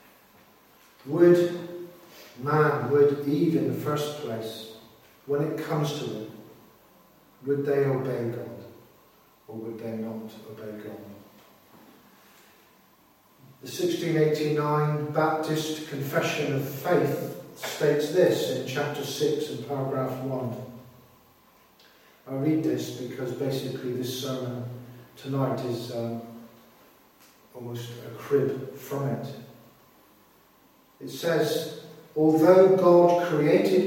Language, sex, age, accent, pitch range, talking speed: English, male, 50-69, British, 130-160 Hz, 100 wpm